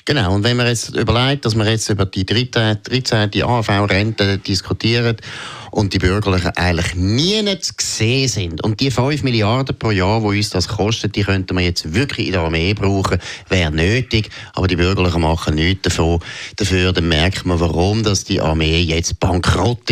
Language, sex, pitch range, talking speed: German, male, 90-120 Hz, 190 wpm